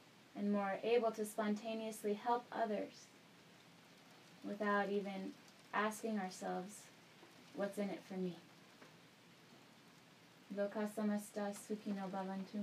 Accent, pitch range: American, 205-260 Hz